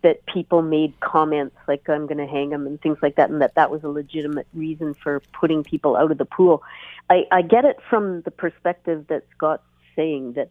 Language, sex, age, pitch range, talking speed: English, female, 40-59, 145-170 Hz, 225 wpm